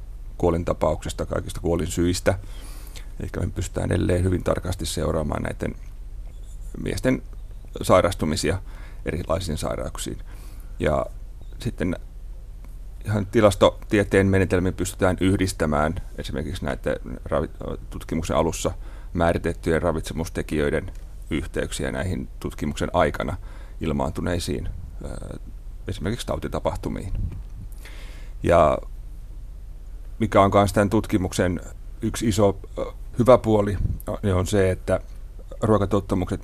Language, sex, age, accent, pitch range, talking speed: Finnish, male, 30-49, native, 85-100 Hz, 85 wpm